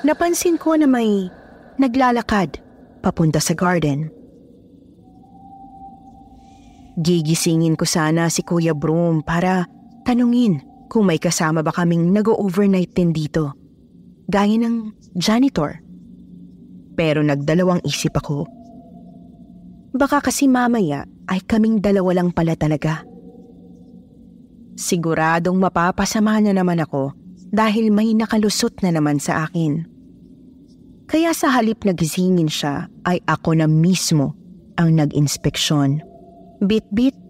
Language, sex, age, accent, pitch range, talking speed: Filipino, female, 20-39, native, 160-220 Hz, 105 wpm